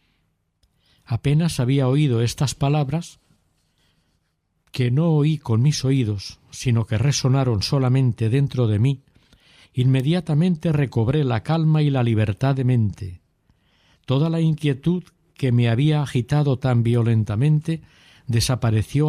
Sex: male